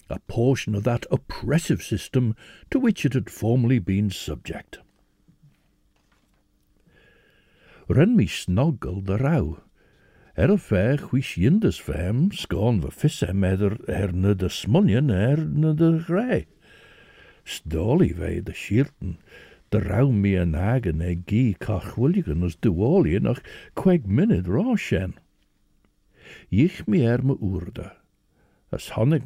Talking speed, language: 120 wpm, English